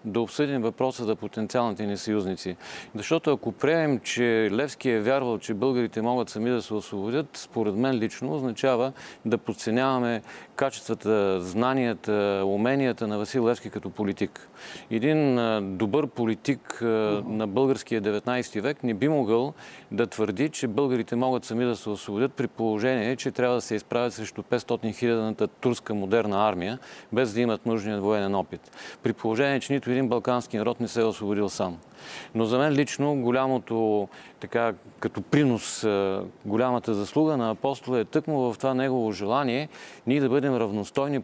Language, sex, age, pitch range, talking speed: Bulgarian, male, 40-59, 105-130 Hz, 155 wpm